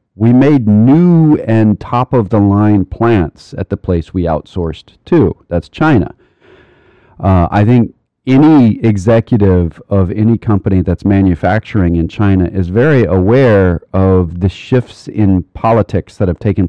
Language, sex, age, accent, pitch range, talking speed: English, male, 40-59, American, 95-125 Hz, 135 wpm